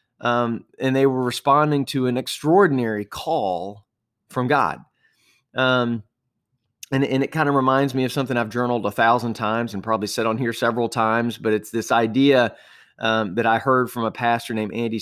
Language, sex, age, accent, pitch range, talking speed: English, male, 30-49, American, 110-135 Hz, 185 wpm